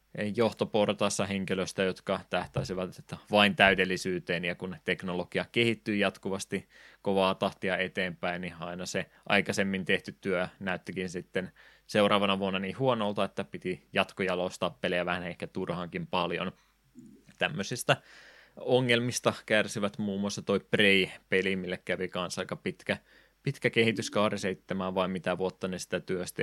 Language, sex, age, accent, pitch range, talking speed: Finnish, male, 20-39, native, 90-105 Hz, 125 wpm